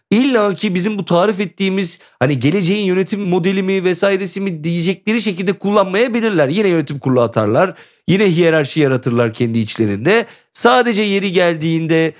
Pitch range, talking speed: 160-230 Hz, 140 wpm